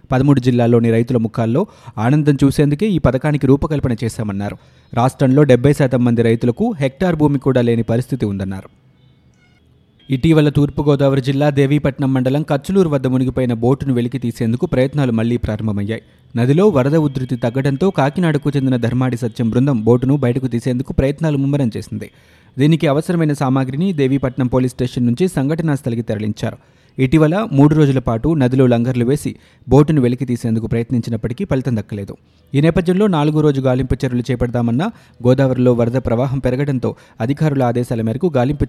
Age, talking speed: 20-39, 130 wpm